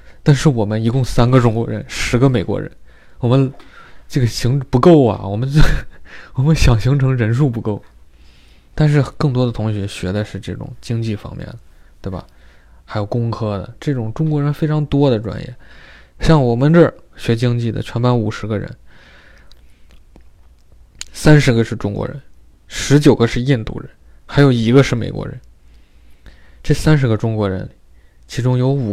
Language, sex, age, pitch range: Chinese, male, 20-39, 100-130 Hz